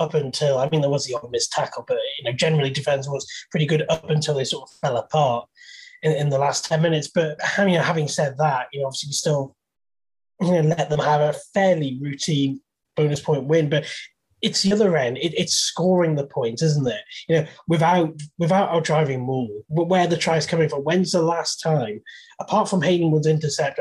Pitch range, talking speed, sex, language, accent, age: 140-175 Hz, 215 wpm, male, English, British, 20-39